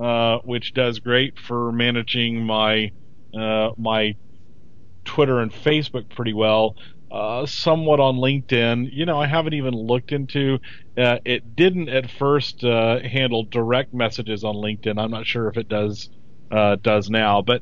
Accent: American